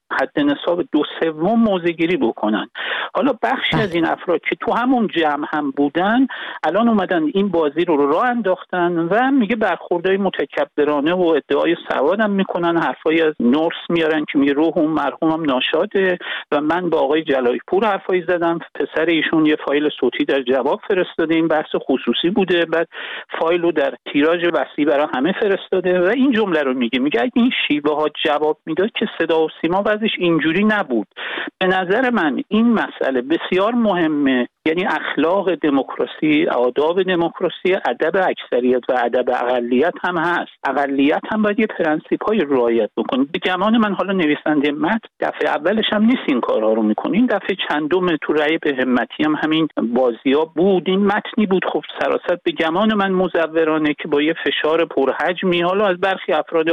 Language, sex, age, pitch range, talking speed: Persian, male, 50-69, 155-205 Hz, 165 wpm